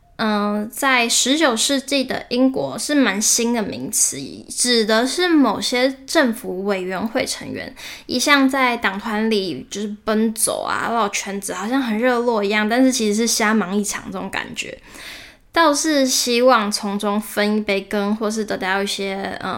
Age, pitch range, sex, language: 10-29, 210-260 Hz, female, Chinese